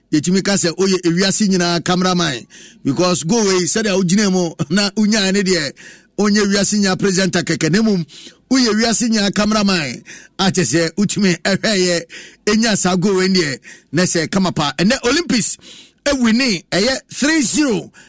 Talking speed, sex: 60 wpm, male